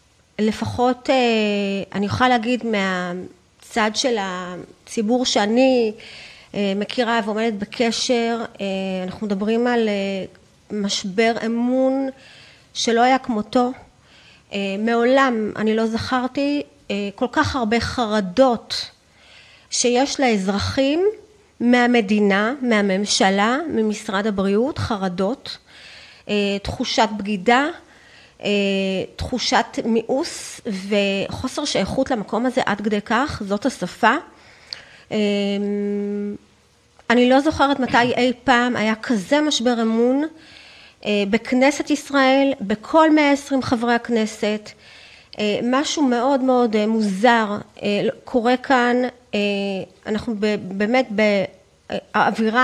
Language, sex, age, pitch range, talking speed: Hebrew, female, 30-49, 205-255 Hz, 90 wpm